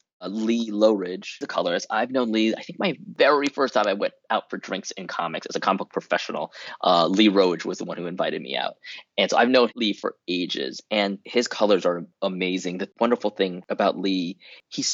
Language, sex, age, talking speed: English, male, 20-39, 215 wpm